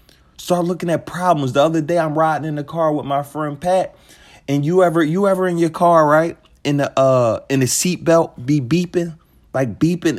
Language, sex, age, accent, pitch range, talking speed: English, male, 30-49, American, 145-185 Hz, 205 wpm